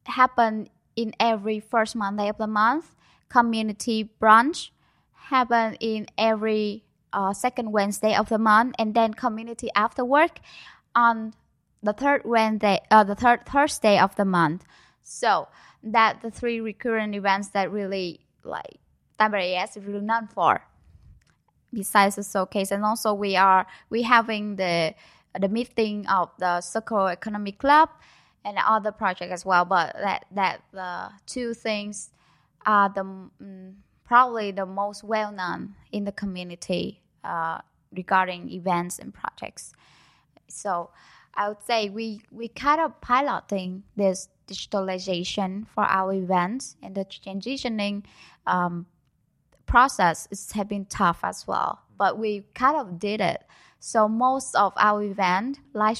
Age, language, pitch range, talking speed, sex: 10-29, English, 195-225 Hz, 135 wpm, female